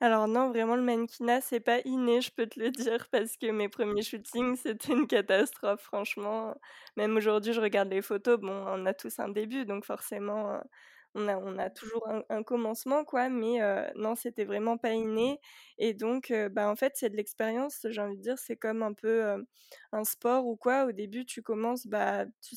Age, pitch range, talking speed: 20-39, 210-245 Hz, 215 wpm